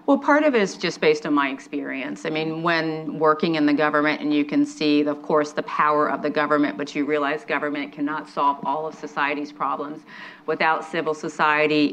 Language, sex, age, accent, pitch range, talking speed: English, female, 40-59, American, 150-185 Hz, 205 wpm